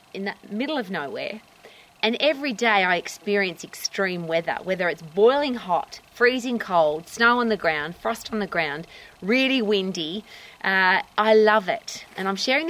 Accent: Australian